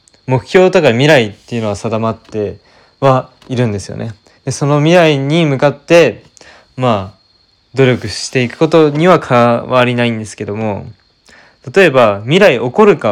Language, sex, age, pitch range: Japanese, male, 20-39, 105-135 Hz